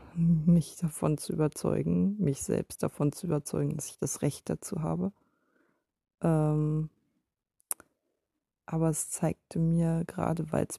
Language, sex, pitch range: German, female, 140-175 Hz